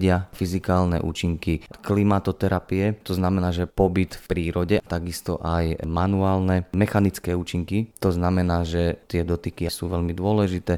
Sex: male